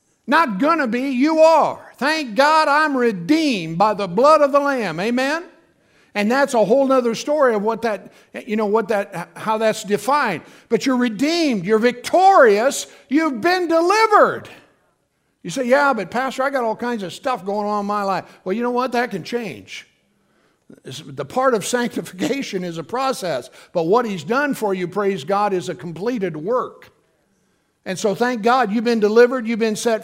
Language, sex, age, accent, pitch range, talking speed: English, male, 50-69, American, 220-310 Hz, 185 wpm